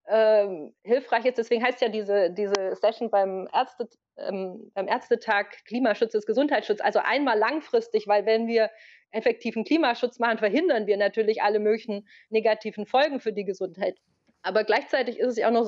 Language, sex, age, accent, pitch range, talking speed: German, female, 30-49, German, 205-255 Hz, 160 wpm